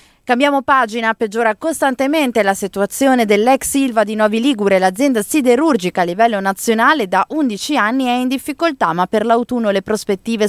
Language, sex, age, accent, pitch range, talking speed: Italian, female, 20-39, native, 200-265 Hz, 155 wpm